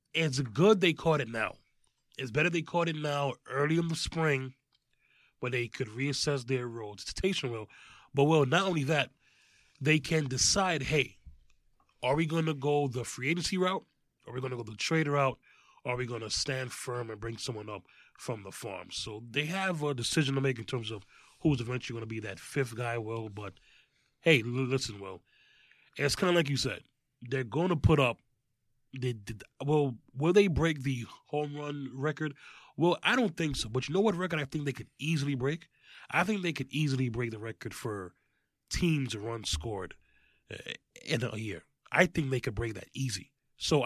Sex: male